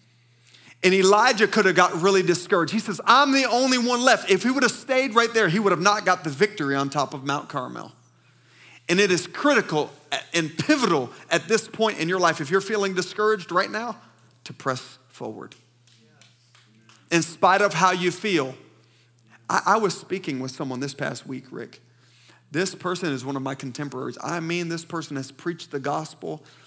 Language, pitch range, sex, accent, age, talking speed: English, 130-180 Hz, male, American, 40-59, 190 wpm